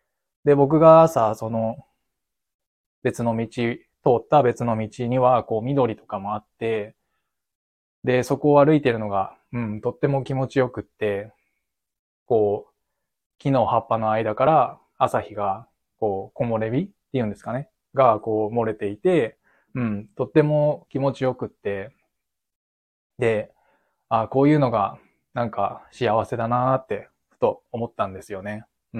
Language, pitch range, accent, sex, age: Japanese, 110-135 Hz, native, male, 20-39